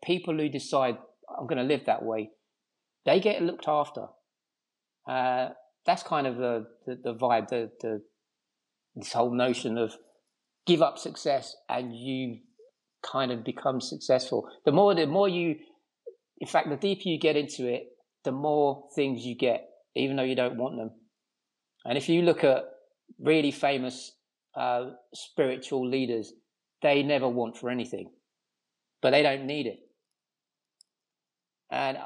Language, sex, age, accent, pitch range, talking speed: English, male, 40-59, British, 125-165 Hz, 150 wpm